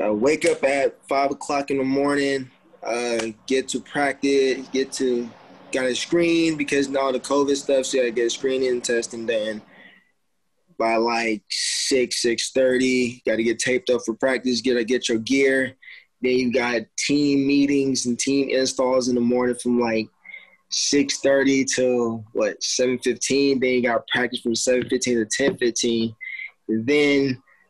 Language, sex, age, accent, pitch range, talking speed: English, male, 20-39, American, 120-135 Hz, 165 wpm